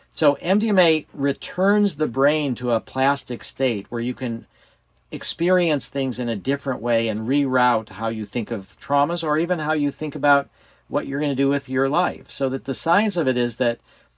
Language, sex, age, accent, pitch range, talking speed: English, male, 50-69, American, 115-145 Hz, 200 wpm